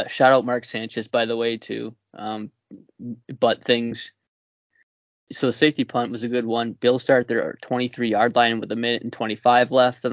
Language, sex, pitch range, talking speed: English, male, 110-125 Hz, 200 wpm